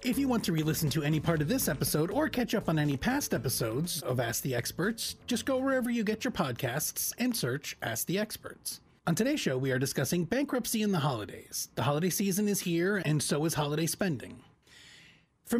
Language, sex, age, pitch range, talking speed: English, male, 30-49, 135-200 Hz, 210 wpm